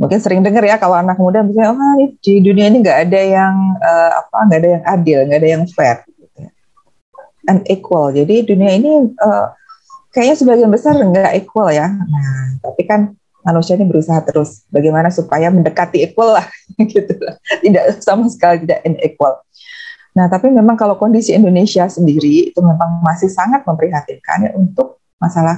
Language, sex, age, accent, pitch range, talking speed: Indonesian, female, 30-49, native, 170-220 Hz, 165 wpm